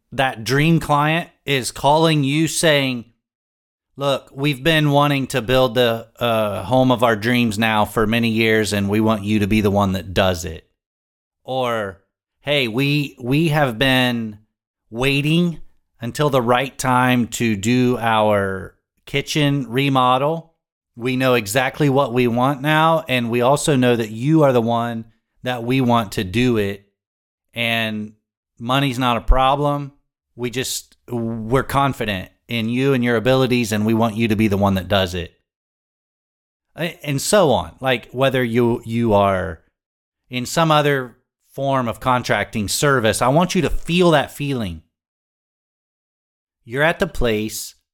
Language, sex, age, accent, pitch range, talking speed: English, male, 30-49, American, 110-140 Hz, 155 wpm